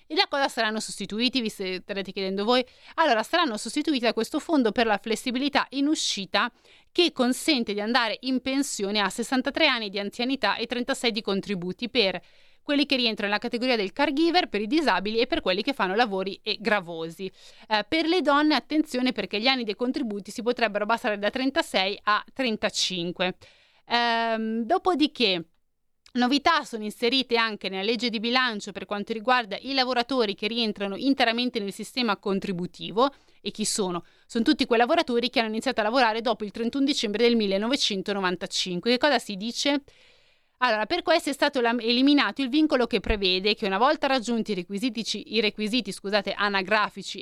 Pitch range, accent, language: 205-265 Hz, native, Italian